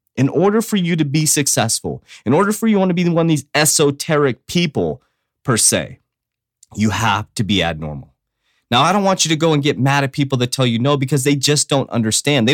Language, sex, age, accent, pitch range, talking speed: English, male, 30-49, American, 130-170 Hz, 235 wpm